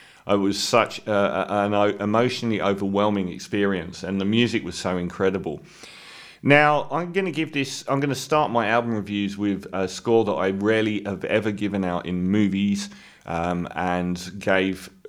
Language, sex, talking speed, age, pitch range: English, male, 165 wpm, 40-59, 95-115 Hz